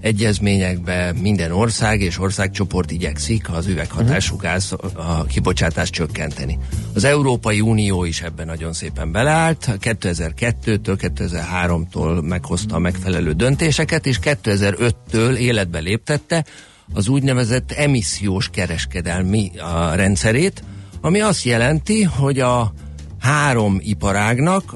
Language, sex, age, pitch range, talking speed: Hungarian, male, 50-69, 90-130 Hz, 100 wpm